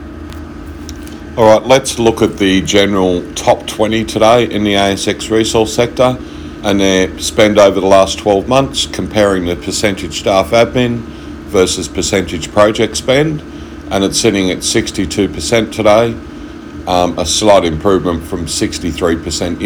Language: English